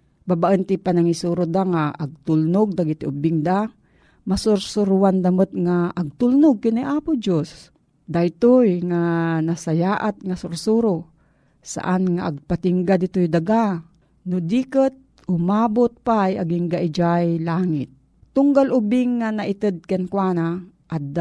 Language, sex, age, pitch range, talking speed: Filipino, female, 40-59, 170-220 Hz, 115 wpm